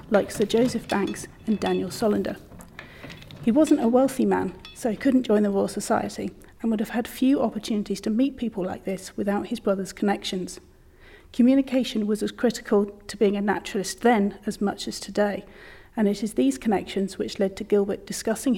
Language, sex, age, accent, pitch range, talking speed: English, female, 40-59, British, 195-230 Hz, 185 wpm